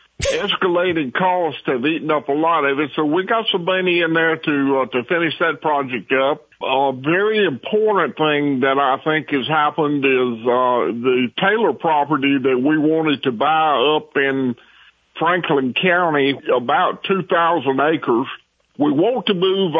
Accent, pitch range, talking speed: American, 135-175 Hz, 160 wpm